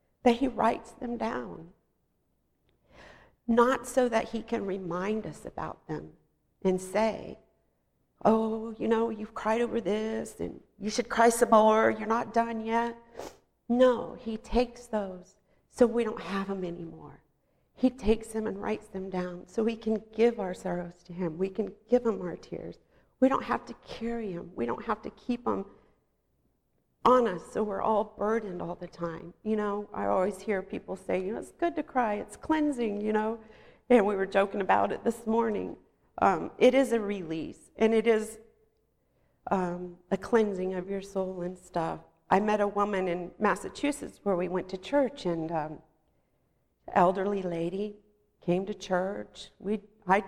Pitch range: 190-230 Hz